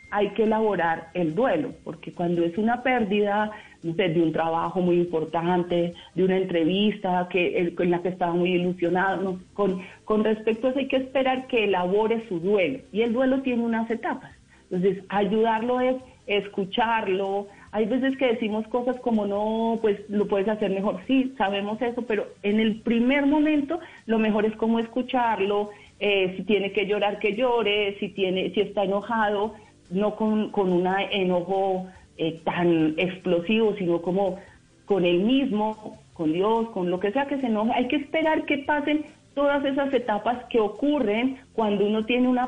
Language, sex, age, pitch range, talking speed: Spanish, female, 40-59, 180-230 Hz, 170 wpm